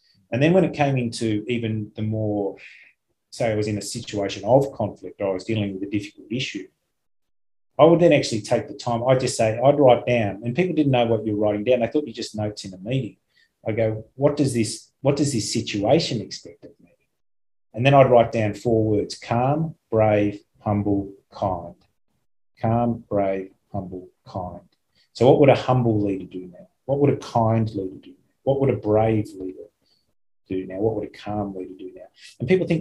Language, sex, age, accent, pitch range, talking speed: English, male, 30-49, Australian, 100-120 Hz, 210 wpm